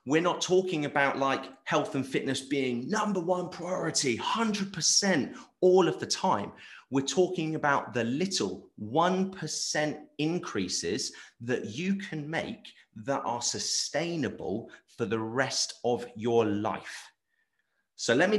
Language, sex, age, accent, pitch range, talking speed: English, male, 30-49, British, 125-185 Hz, 130 wpm